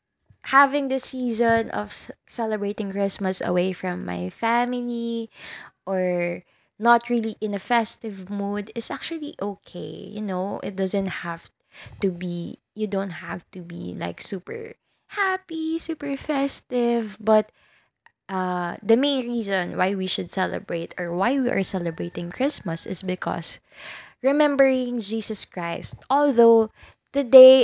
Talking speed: 130 wpm